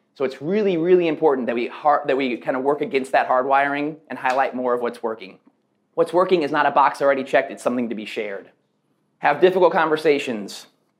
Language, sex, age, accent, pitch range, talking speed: English, male, 30-49, American, 120-150 Hz, 205 wpm